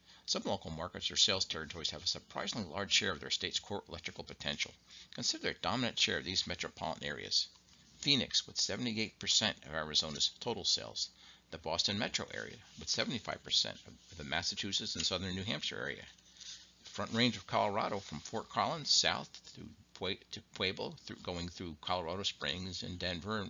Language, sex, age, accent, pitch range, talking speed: English, male, 50-69, American, 80-105 Hz, 160 wpm